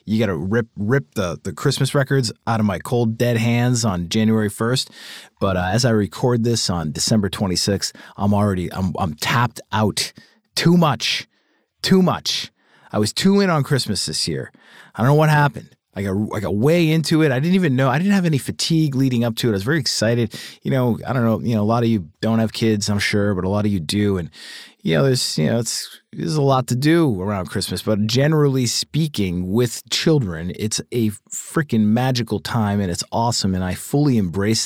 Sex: male